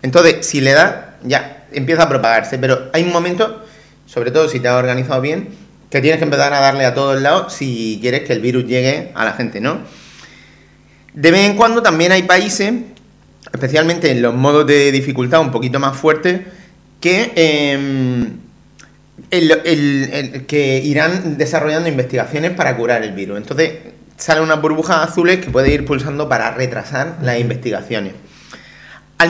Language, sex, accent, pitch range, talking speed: Spanish, male, Spanish, 130-170 Hz, 170 wpm